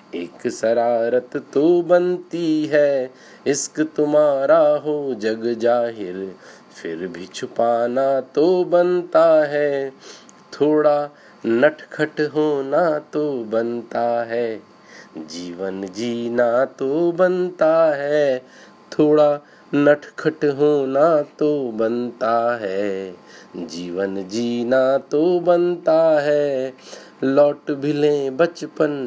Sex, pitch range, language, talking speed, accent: male, 120-150 Hz, Hindi, 80 wpm, native